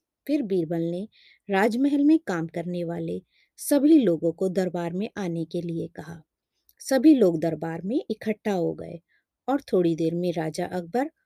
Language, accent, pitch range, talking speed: Hindi, native, 175-250 Hz, 160 wpm